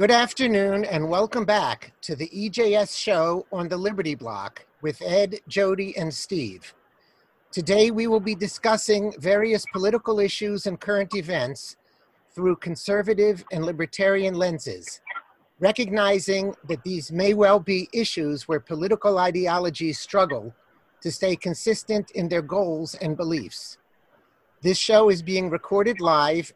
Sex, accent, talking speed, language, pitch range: male, American, 135 wpm, English, 160-200 Hz